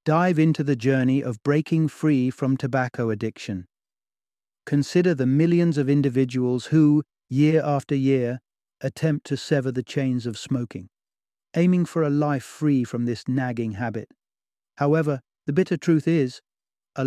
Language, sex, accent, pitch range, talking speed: English, male, British, 125-155 Hz, 145 wpm